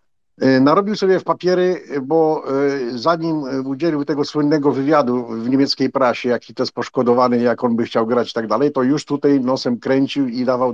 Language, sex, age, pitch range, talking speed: Polish, male, 50-69, 110-140 Hz, 180 wpm